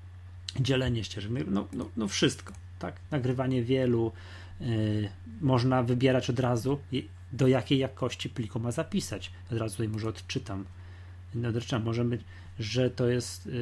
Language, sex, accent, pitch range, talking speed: Polish, male, native, 105-130 Hz, 135 wpm